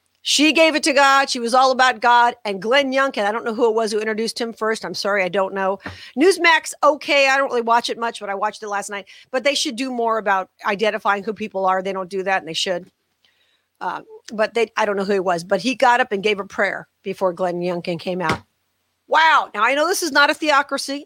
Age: 40-59